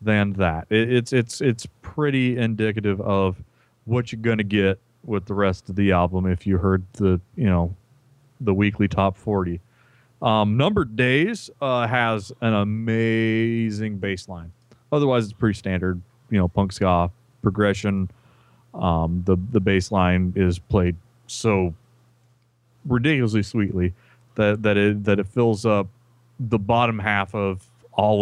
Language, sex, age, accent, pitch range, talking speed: English, male, 30-49, American, 95-120 Hz, 145 wpm